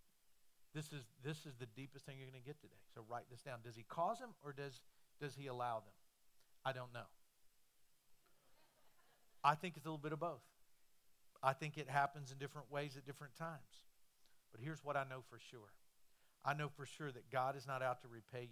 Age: 50-69